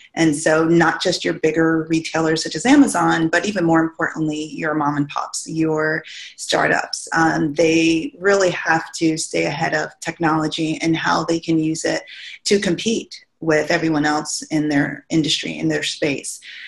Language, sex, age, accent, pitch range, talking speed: English, female, 30-49, American, 155-180 Hz, 165 wpm